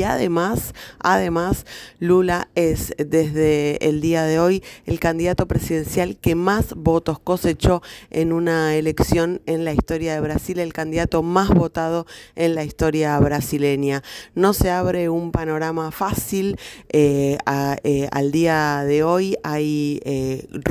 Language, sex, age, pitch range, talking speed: Spanish, female, 20-39, 145-170 Hz, 135 wpm